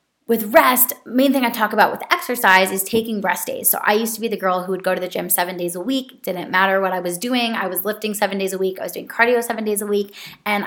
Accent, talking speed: American, 290 wpm